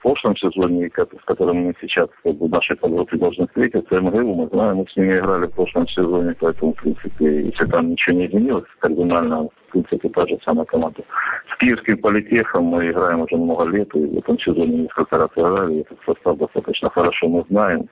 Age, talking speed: 50-69, 195 wpm